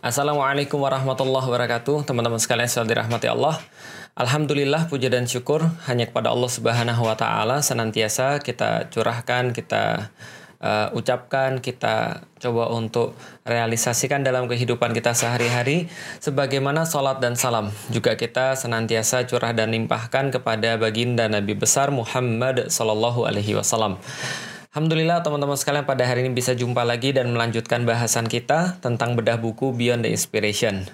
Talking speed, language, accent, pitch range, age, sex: 130 wpm, Indonesian, native, 115-140 Hz, 20-39, male